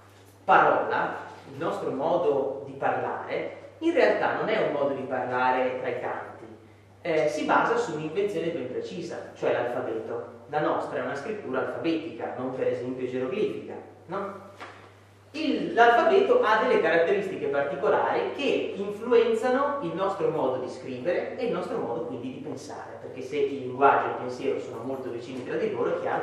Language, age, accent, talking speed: Italian, 30-49, native, 165 wpm